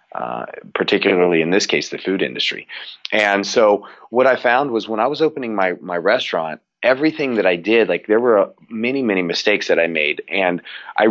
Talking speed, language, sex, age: 195 wpm, English, male, 30-49